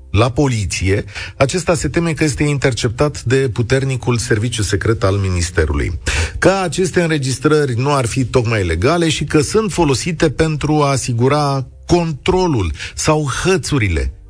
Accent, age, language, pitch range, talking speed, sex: native, 40-59, Romanian, 100-150 Hz, 135 wpm, male